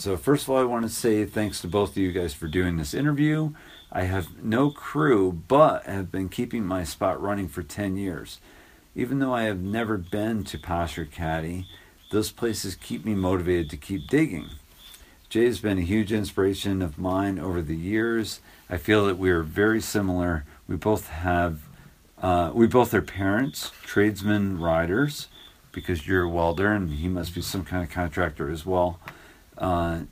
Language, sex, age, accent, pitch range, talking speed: English, male, 50-69, American, 85-105 Hz, 185 wpm